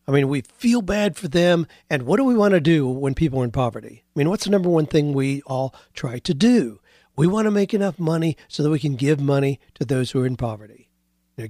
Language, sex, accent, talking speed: English, male, American, 260 wpm